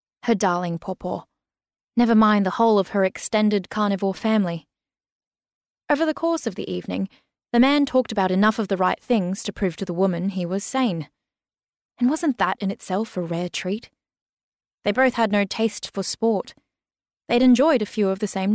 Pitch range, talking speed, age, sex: 180-225 Hz, 185 wpm, 20-39, female